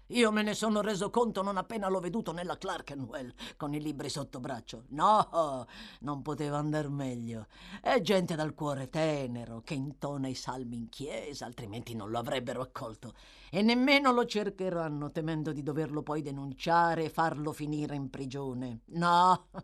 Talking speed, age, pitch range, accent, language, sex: 165 wpm, 50-69, 150-230 Hz, native, Italian, female